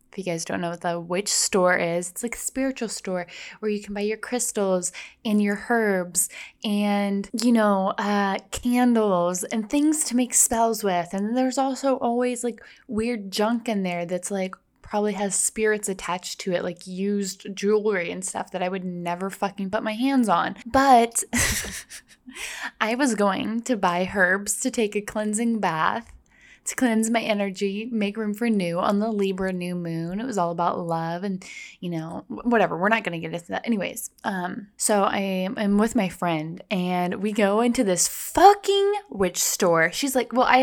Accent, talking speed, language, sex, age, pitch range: American, 190 wpm, English, female, 10-29, 190-235 Hz